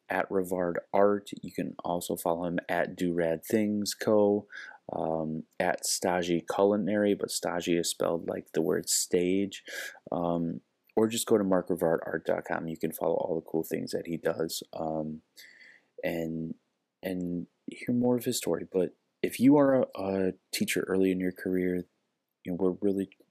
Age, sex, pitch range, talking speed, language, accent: 30-49, male, 85-100 Hz, 165 wpm, English, American